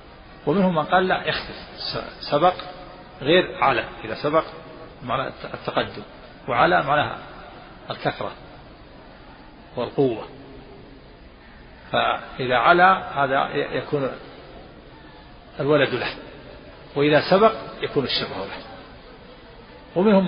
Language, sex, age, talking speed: Arabic, male, 50-69, 85 wpm